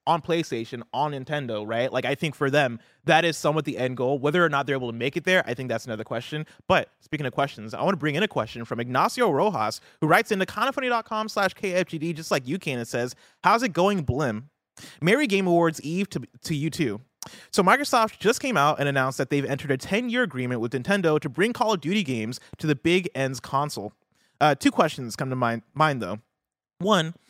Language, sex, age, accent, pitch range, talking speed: English, male, 20-39, American, 130-185 Hz, 230 wpm